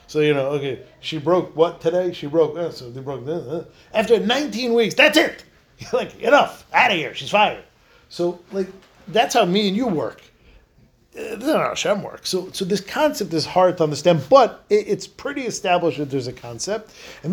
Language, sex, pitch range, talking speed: English, male, 150-210 Hz, 215 wpm